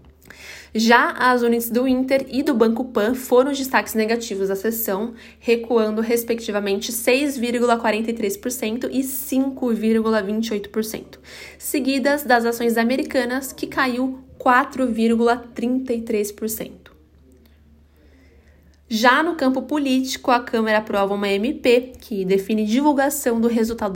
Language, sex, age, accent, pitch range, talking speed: Portuguese, female, 20-39, Brazilian, 205-250 Hz, 105 wpm